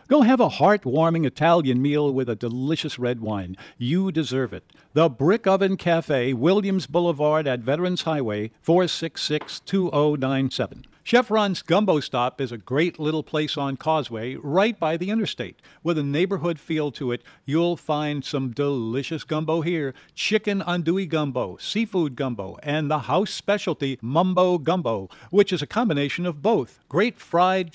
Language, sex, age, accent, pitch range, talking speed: English, male, 50-69, American, 135-175 Hz, 150 wpm